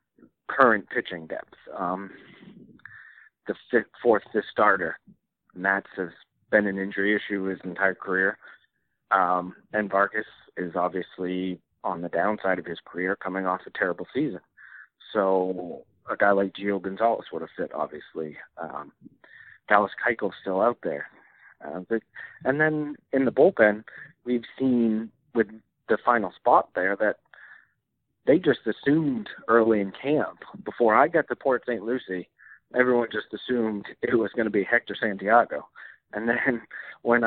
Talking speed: 145 wpm